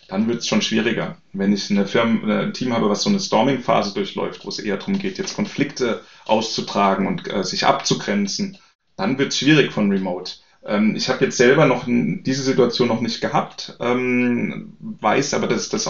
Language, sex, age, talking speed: German, male, 30-49, 200 wpm